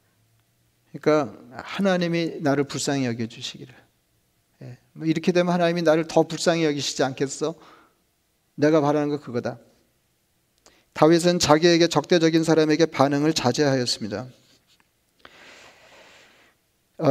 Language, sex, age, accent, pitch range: Korean, male, 40-59, native, 130-165 Hz